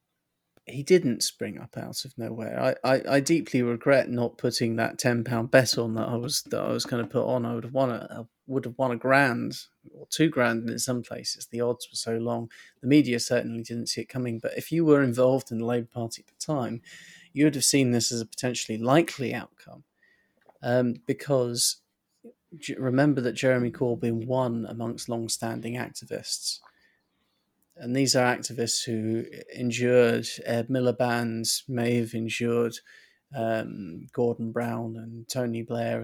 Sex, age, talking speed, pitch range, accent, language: male, 30-49, 180 wpm, 115-130 Hz, British, English